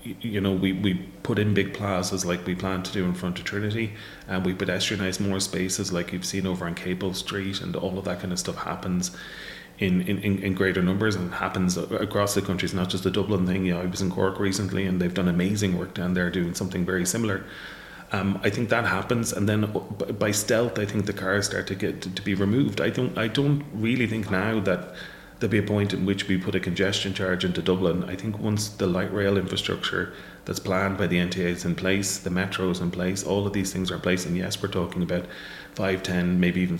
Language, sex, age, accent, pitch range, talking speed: English, male, 30-49, Irish, 90-100 Hz, 240 wpm